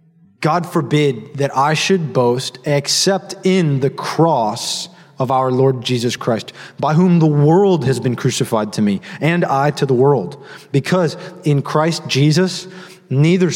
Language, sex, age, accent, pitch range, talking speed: English, male, 20-39, American, 130-170 Hz, 150 wpm